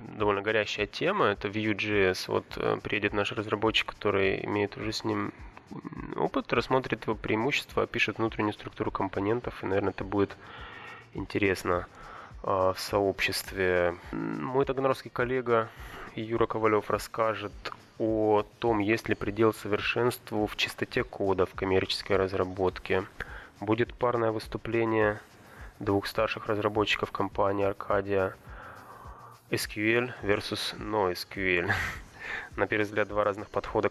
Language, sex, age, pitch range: Russian, male, 20-39, 95-110 Hz